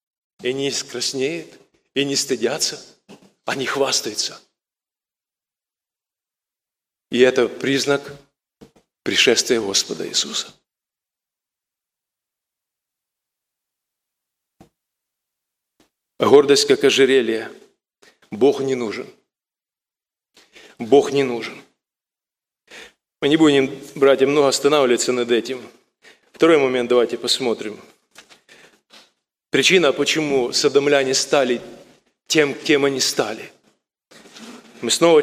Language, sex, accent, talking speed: Russian, male, native, 80 wpm